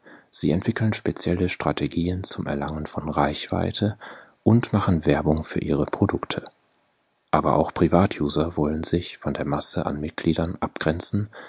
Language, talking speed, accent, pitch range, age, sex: German, 130 wpm, German, 75-100 Hz, 40-59, male